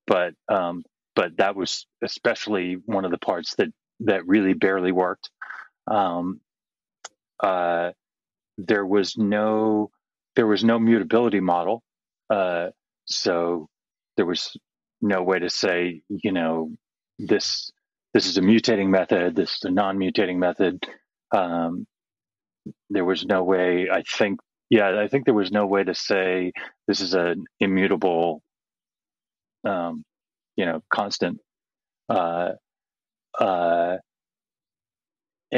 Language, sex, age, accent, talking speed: English, male, 30-49, American, 125 wpm